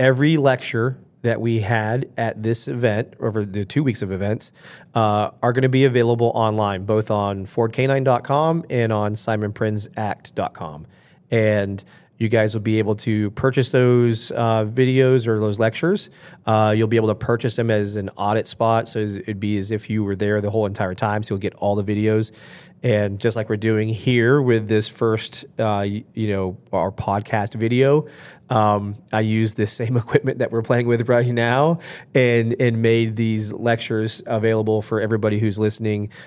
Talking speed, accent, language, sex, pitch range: 180 wpm, American, English, male, 105-120 Hz